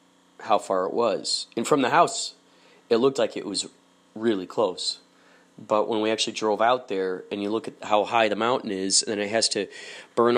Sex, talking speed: male, 215 wpm